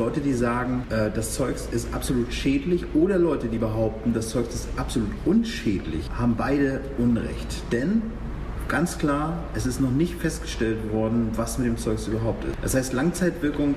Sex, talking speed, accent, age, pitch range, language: male, 165 wpm, German, 40-59, 115-145 Hz, German